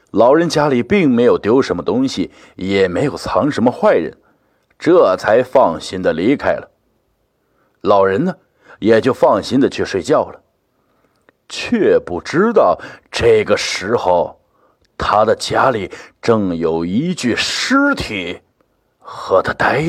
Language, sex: Chinese, male